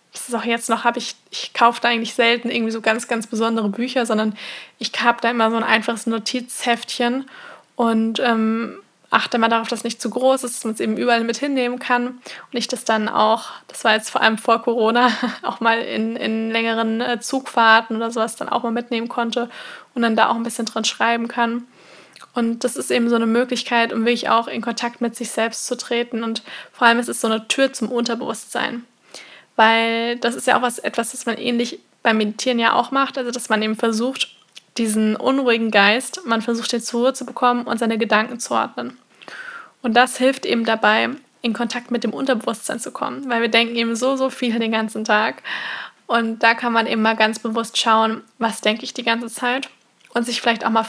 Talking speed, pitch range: 215 wpm, 225-245 Hz